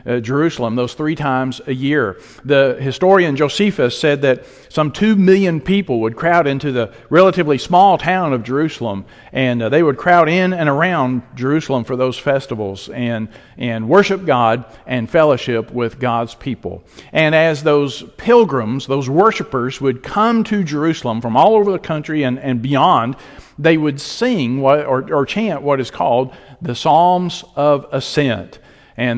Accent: American